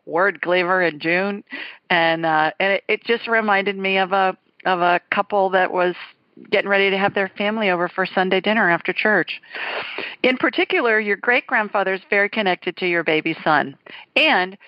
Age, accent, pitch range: 50-69, American, 170-215 Hz